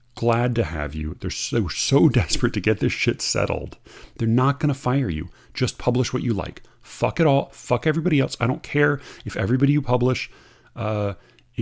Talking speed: 195 wpm